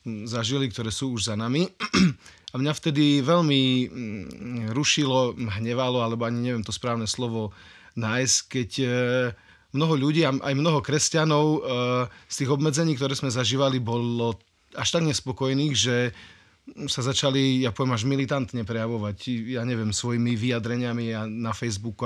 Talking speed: 135 wpm